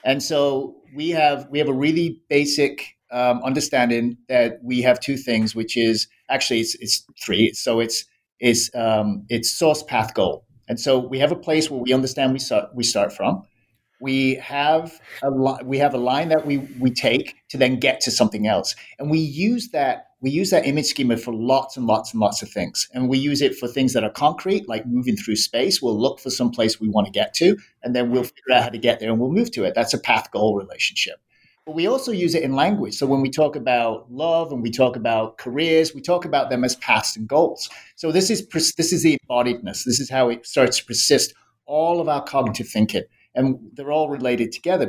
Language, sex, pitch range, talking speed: English, male, 120-155 Hz, 225 wpm